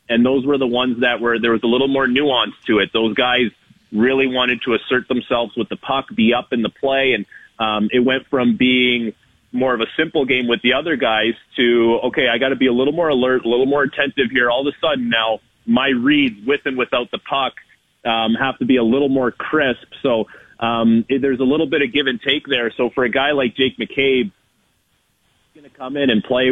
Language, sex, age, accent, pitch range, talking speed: English, male, 30-49, American, 115-135 Hz, 235 wpm